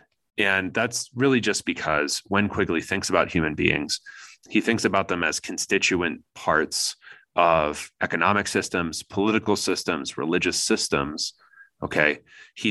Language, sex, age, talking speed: English, male, 30-49, 125 wpm